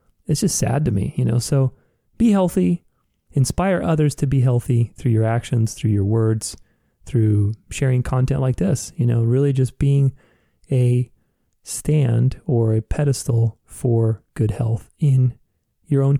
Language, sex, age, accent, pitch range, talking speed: English, male, 30-49, American, 115-145 Hz, 155 wpm